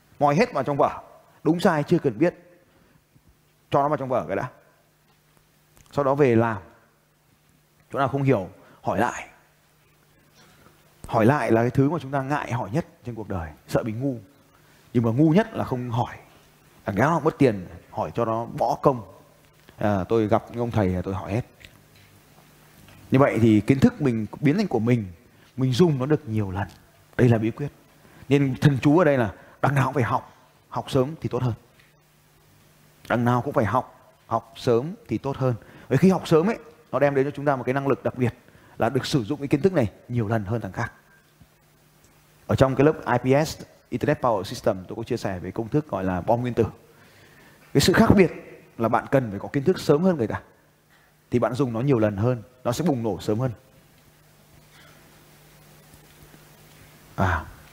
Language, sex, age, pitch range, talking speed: Vietnamese, male, 20-39, 115-145 Hz, 200 wpm